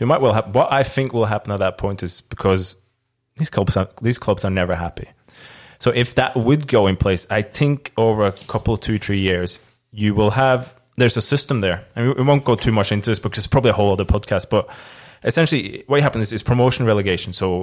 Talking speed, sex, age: 235 wpm, male, 20-39